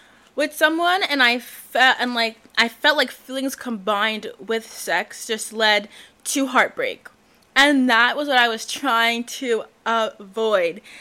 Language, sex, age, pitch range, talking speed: English, female, 20-39, 210-255 Hz, 145 wpm